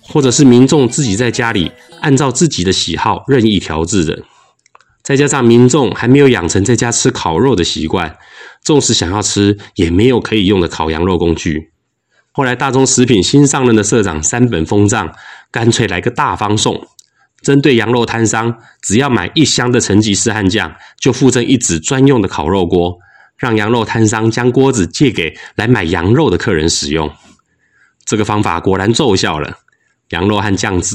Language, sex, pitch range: Chinese, male, 95-125 Hz